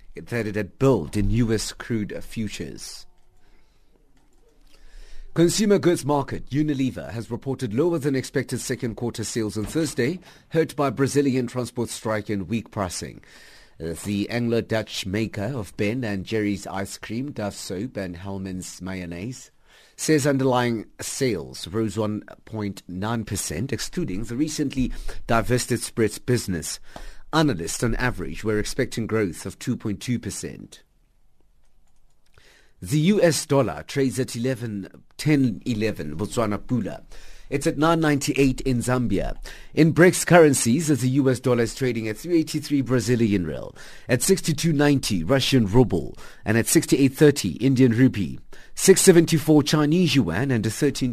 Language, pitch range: English, 105-145 Hz